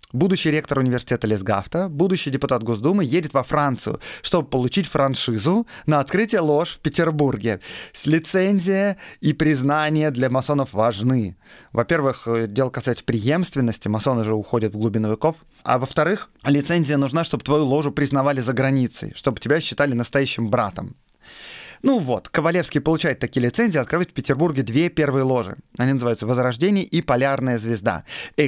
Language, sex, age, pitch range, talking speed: Russian, male, 30-49, 125-160 Hz, 145 wpm